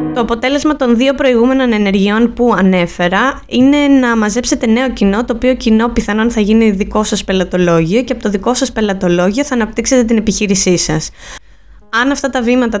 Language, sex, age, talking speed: Greek, female, 20-39, 175 wpm